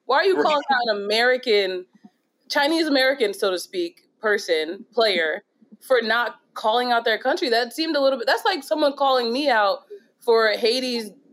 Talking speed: 175 wpm